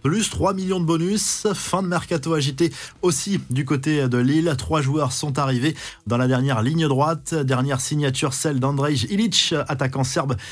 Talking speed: 170 wpm